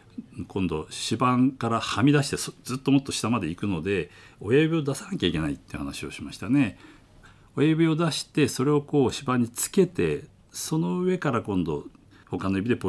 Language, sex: Japanese, male